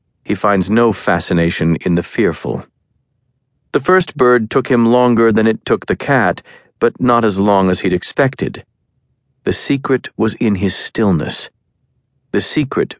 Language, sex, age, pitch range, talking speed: English, male, 40-59, 100-130 Hz, 150 wpm